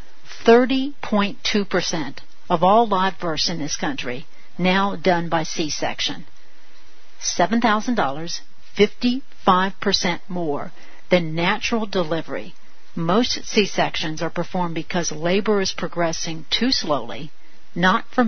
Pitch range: 170-205 Hz